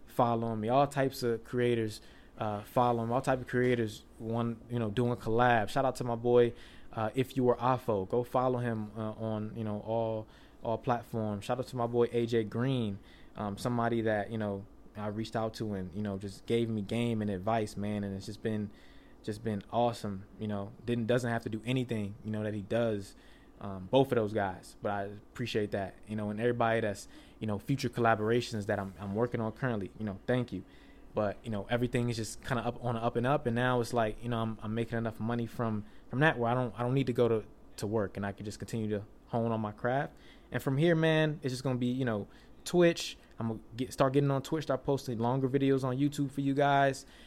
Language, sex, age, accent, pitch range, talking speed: English, male, 20-39, American, 105-125 Hz, 240 wpm